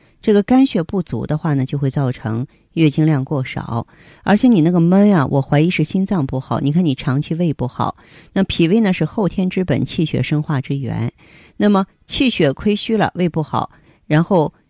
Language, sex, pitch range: Chinese, female, 135-175 Hz